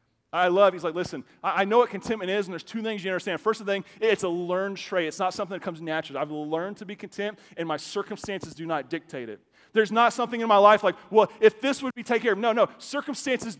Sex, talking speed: male, 255 wpm